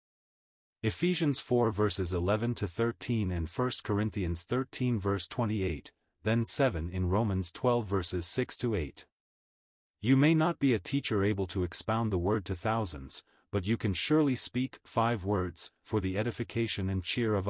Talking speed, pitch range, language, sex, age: 145 wpm, 95-120 Hz, English, male, 40-59